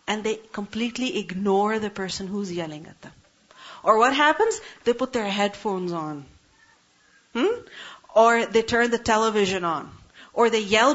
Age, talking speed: 40-59, 155 wpm